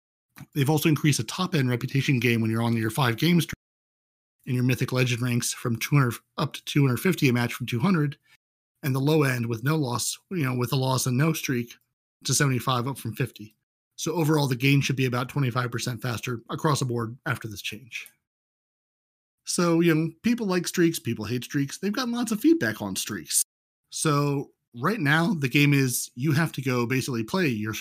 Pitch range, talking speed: 120-150 Hz, 195 wpm